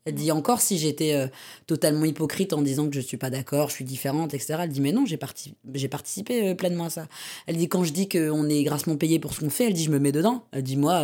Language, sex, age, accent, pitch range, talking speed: French, female, 20-39, French, 145-175 Hz, 270 wpm